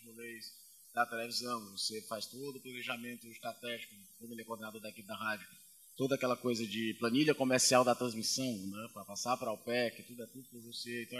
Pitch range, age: 115-150 Hz, 20-39